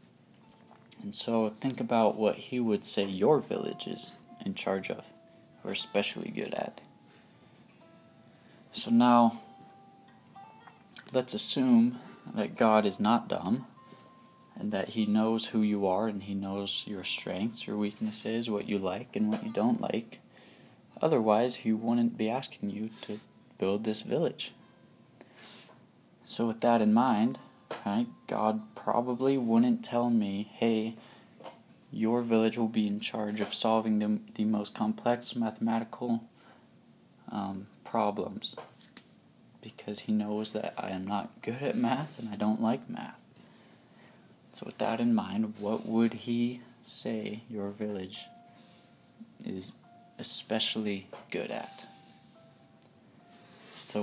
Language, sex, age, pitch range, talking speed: English, male, 20-39, 105-135 Hz, 130 wpm